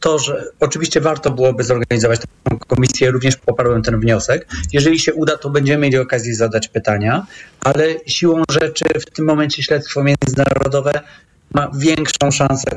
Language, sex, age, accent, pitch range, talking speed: Polish, male, 30-49, native, 130-165 Hz, 150 wpm